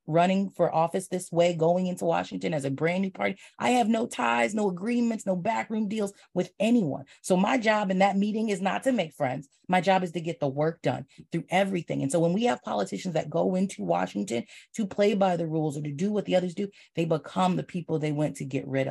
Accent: American